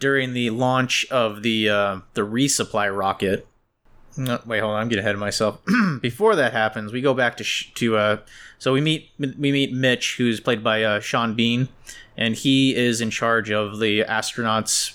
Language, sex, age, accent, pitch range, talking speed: English, male, 20-39, American, 110-125 Hz, 195 wpm